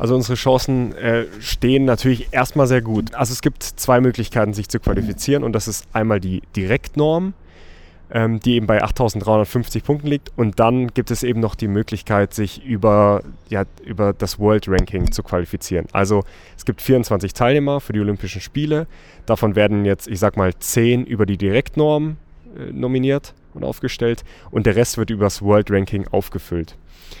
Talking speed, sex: 170 wpm, male